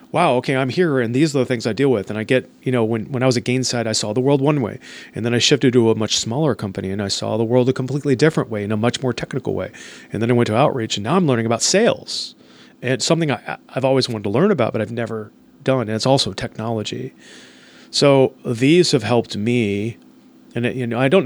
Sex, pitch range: male, 110-130 Hz